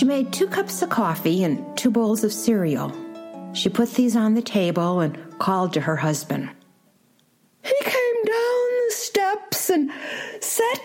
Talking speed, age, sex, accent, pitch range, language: 160 wpm, 50-69, female, American, 240-335 Hz, English